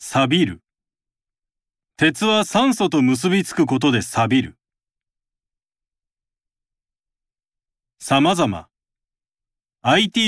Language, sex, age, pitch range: Japanese, male, 40-59, 110-185 Hz